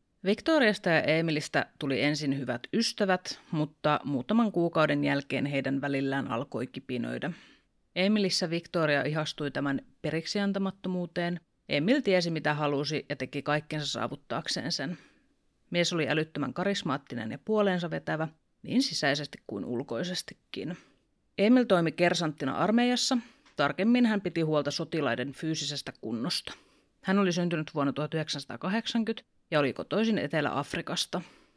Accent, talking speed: native, 115 wpm